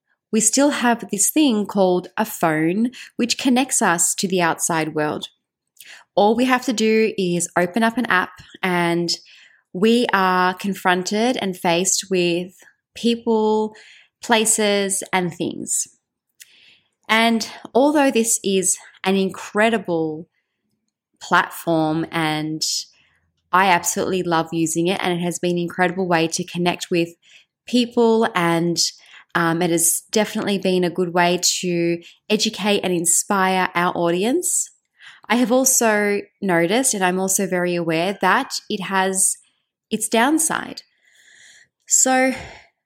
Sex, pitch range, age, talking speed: female, 170-215 Hz, 20-39, 125 wpm